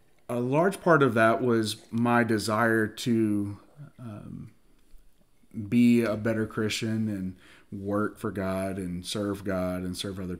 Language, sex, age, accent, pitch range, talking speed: English, male, 30-49, American, 100-120 Hz, 140 wpm